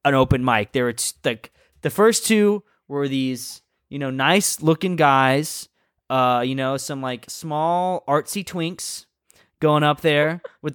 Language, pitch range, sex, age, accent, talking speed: English, 135-175 Hz, male, 20-39, American, 160 wpm